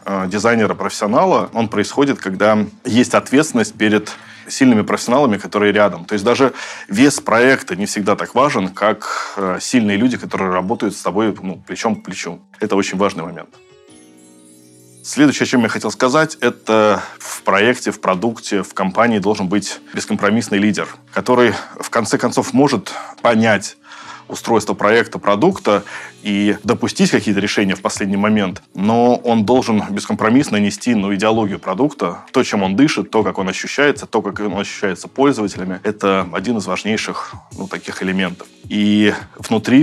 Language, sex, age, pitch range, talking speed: Russian, male, 20-39, 95-110 Hz, 145 wpm